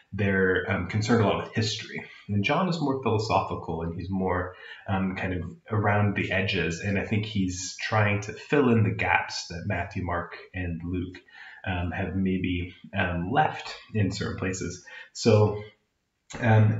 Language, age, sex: English, 30-49, male